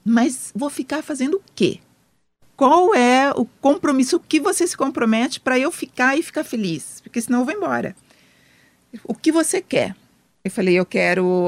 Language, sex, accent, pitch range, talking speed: English, female, Brazilian, 190-250 Hz, 175 wpm